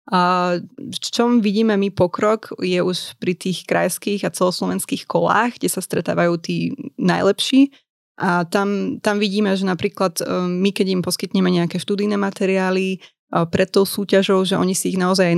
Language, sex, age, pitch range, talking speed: Slovak, female, 20-39, 180-200 Hz, 160 wpm